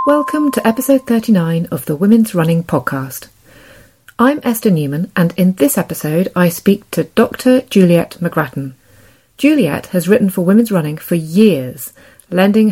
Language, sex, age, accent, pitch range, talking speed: English, female, 30-49, British, 160-225 Hz, 145 wpm